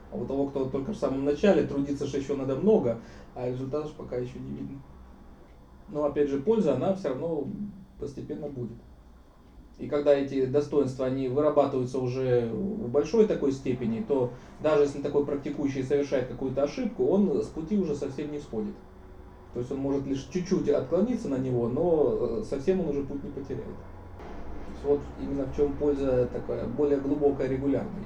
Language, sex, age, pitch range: Russian, male, 20-39, 120-145 Hz